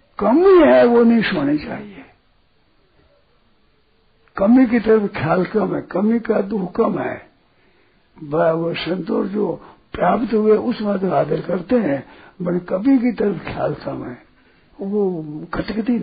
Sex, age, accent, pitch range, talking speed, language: male, 60-79, native, 175-230 Hz, 140 wpm, Hindi